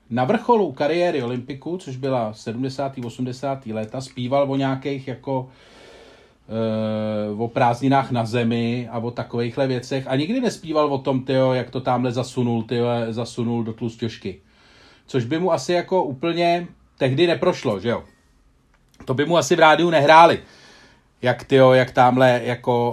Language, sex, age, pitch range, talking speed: Czech, male, 40-59, 120-155 Hz, 150 wpm